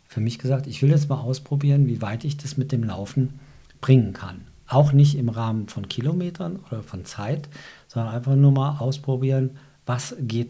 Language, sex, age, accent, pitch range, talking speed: German, male, 50-69, German, 110-135 Hz, 190 wpm